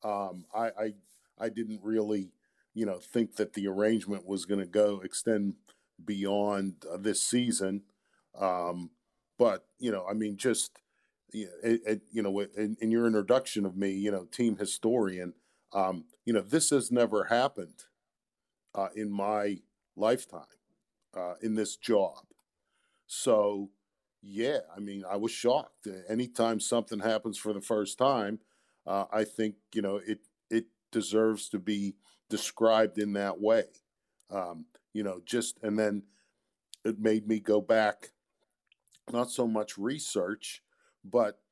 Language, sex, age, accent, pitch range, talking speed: English, male, 50-69, American, 100-115 Hz, 150 wpm